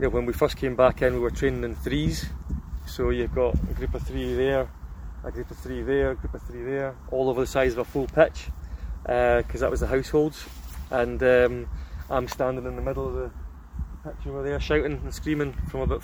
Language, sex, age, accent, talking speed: English, male, 20-39, British, 230 wpm